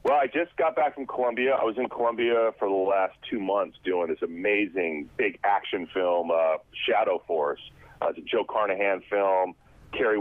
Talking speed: 190 wpm